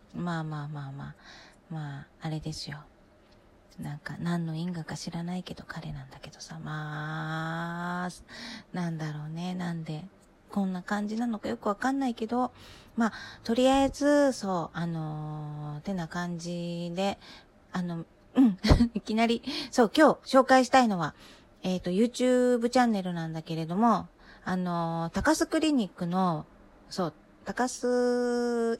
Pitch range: 165-240 Hz